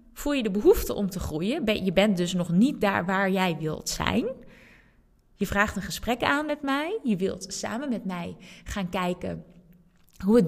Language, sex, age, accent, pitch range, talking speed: Dutch, female, 20-39, Dutch, 185-255 Hz, 190 wpm